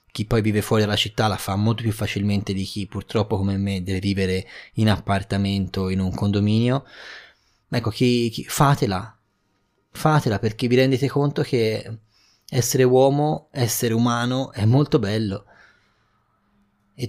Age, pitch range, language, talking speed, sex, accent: 20-39, 100-125 Hz, Italian, 145 wpm, male, native